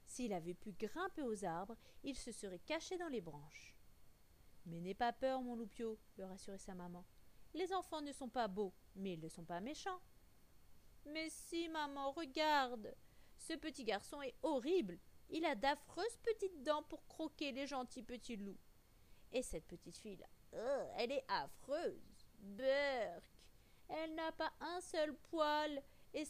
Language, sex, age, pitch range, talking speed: French, female, 40-59, 200-305 Hz, 175 wpm